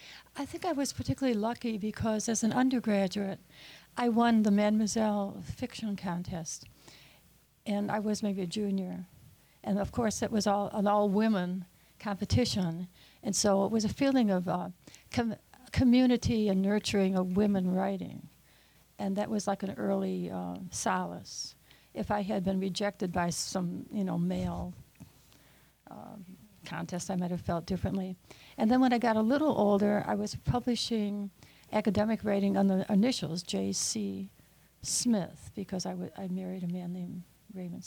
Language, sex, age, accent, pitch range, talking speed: English, female, 60-79, American, 180-210 Hz, 155 wpm